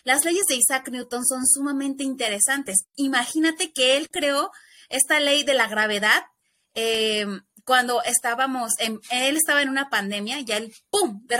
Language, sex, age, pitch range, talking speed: English, female, 20-39, 225-290 Hz, 165 wpm